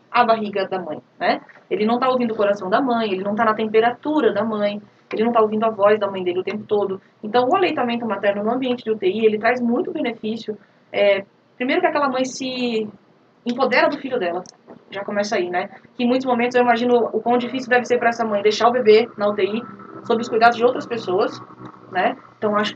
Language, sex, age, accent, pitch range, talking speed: Portuguese, female, 20-39, Brazilian, 200-235 Hz, 230 wpm